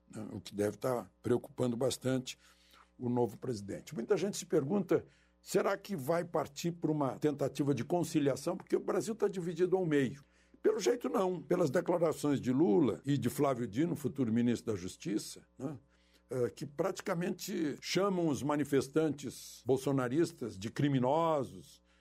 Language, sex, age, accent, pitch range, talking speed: Portuguese, male, 60-79, Brazilian, 120-170 Hz, 145 wpm